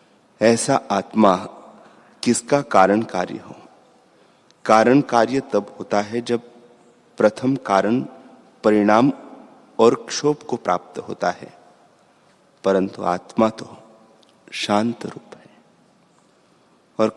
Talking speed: 100 wpm